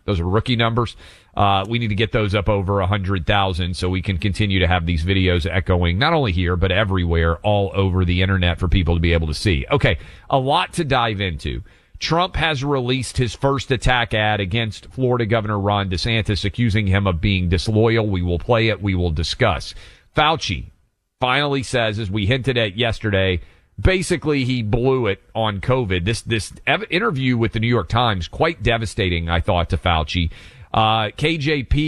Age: 40-59